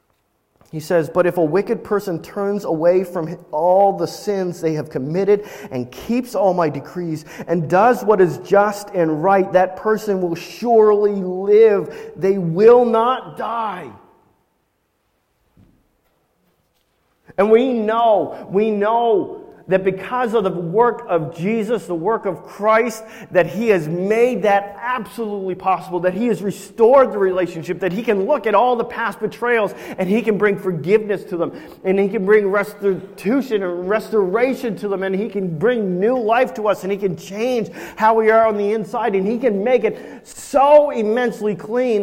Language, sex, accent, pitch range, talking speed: English, male, American, 185-230 Hz, 165 wpm